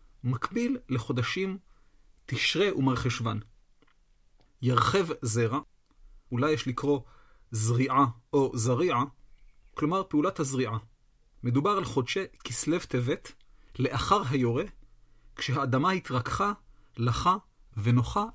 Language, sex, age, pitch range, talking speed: Hebrew, male, 40-59, 115-155 Hz, 85 wpm